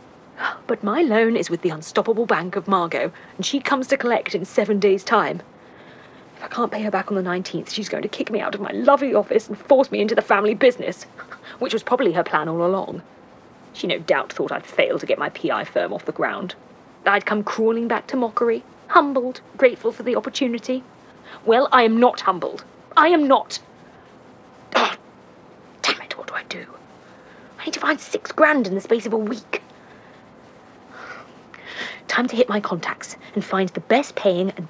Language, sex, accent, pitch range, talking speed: English, female, British, 200-275 Hz, 195 wpm